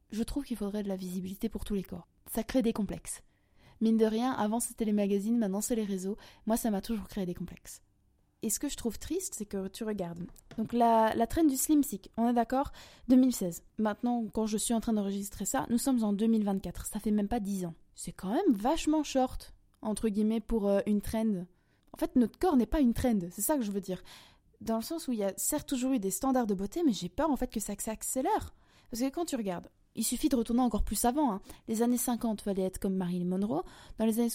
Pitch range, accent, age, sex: 200-240 Hz, French, 20-39, female